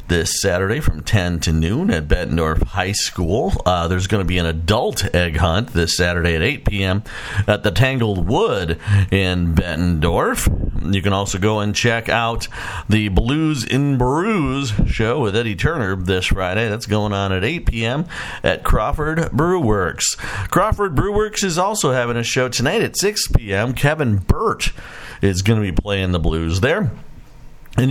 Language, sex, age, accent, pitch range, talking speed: English, male, 50-69, American, 100-130 Hz, 170 wpm